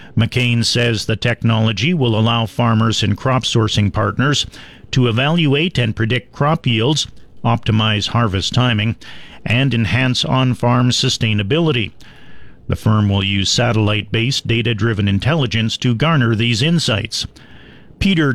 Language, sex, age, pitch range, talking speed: English, male, 50-69, 110-130 Hz, 120 wpm